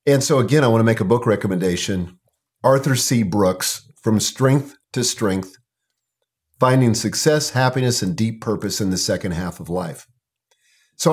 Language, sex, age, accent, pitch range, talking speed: English, male, 50-69, American, 110-135 Hz, 160 wpm